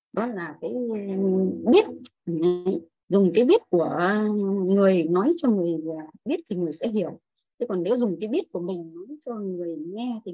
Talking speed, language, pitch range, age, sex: 175 wpm, Vietnamese, 185-260 Hz, 20-39, female